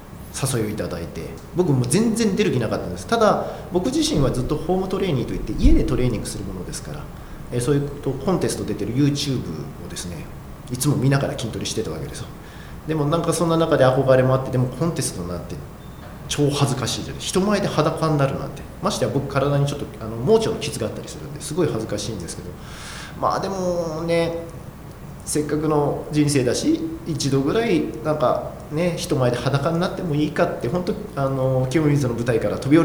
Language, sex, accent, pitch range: Japanese, male, native, 120-170 Hz